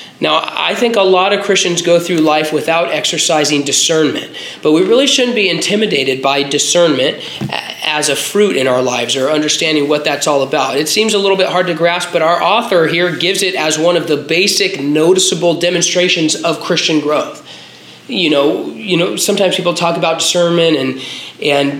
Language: English